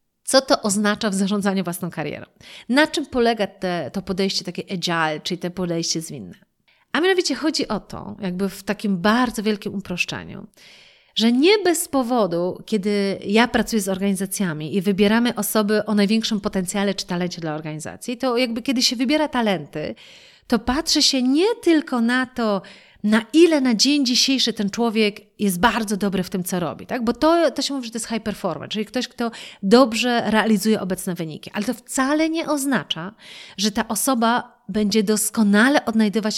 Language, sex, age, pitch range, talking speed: Polish, female, 30-49, 195-255 Hz, 170 wpm